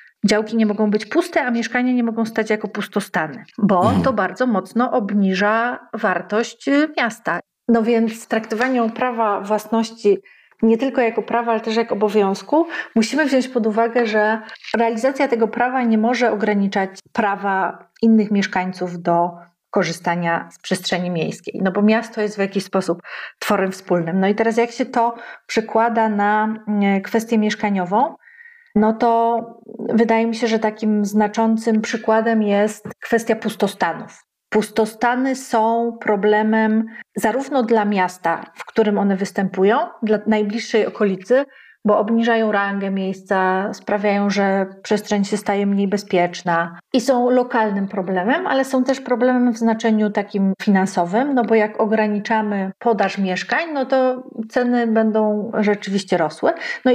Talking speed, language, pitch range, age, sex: 140 wpm, Polish, 200-235 Hz, 30-49, female